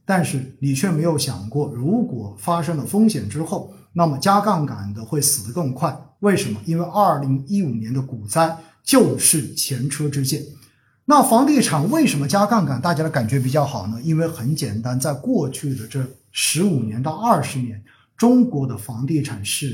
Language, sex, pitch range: Chinese, male, 135-200 Hz